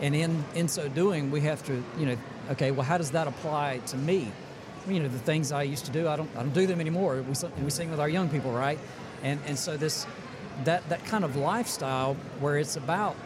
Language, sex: English, male